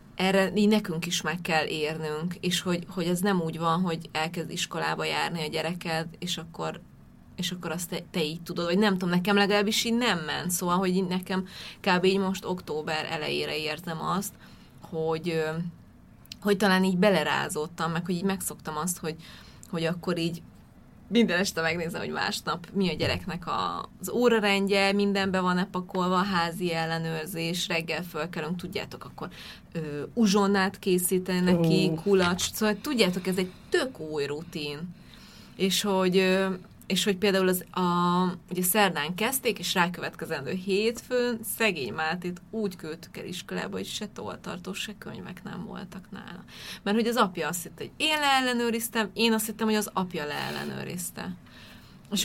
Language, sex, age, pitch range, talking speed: Hungarian, female, 20-39, 165-200 Hz, 155 wpm